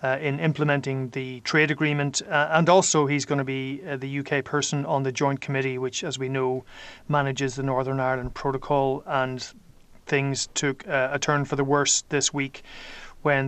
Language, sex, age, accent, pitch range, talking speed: English, male, 30-49, Irish, 135-145 Hz, 185 wpm